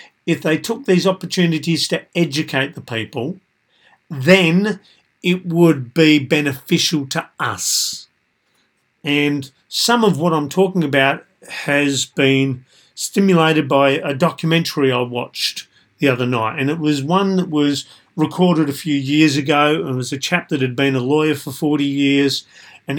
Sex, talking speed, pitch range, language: male, 150 wpm, 135-165 Hz, English